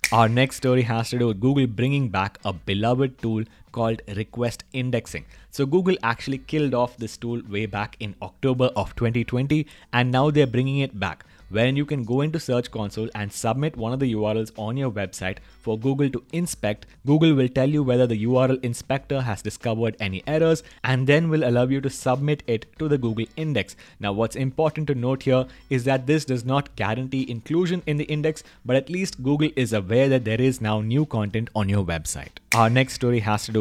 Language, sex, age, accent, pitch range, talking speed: English, male, 20-39, Indian, 110-135 Hz, 205 wpm